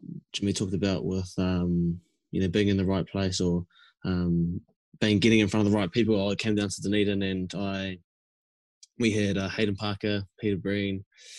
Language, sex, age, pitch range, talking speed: English, male, 20-39, 95-105 Hz, 190 wpm